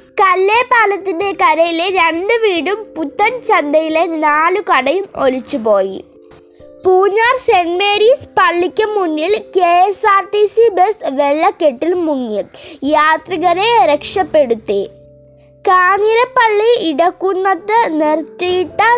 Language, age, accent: Malayalam, 20-39, native